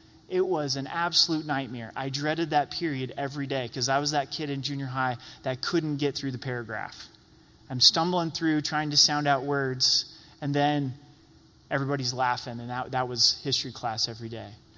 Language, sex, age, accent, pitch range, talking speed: English, male, 30-49, American, 135-175 Hz, 185 wpm